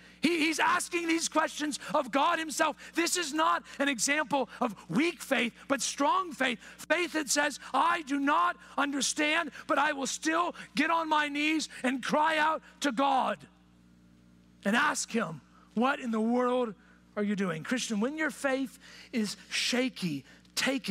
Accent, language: American, English